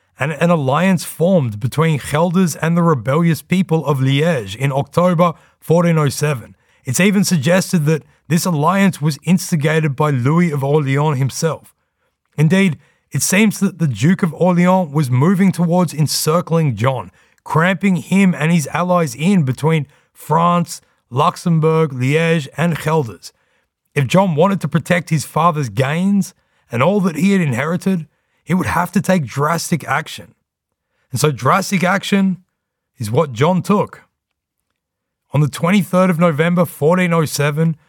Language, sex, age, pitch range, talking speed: English, male, 30-49, 145-180 Hz, 140 wpm